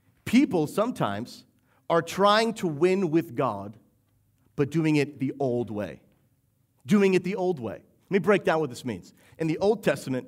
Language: English